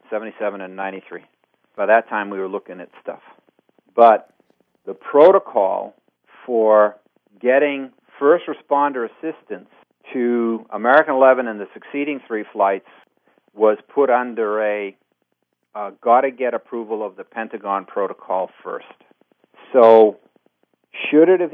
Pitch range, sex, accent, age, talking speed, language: 105-140 Hz, male, American, 50-69, 125 wpm, English